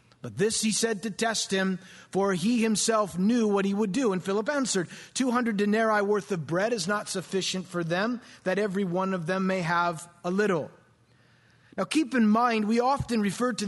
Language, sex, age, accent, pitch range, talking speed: English, male, 30-49, American, 185-235 Hz, 200 wpm